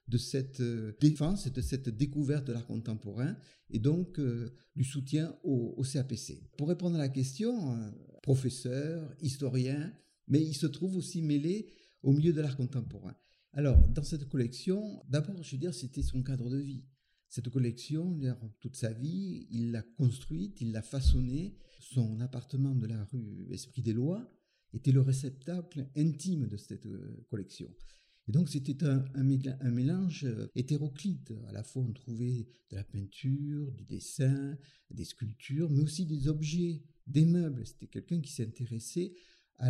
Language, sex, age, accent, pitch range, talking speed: French, male, 50-69, French, 120-155 Hz, 155 wpm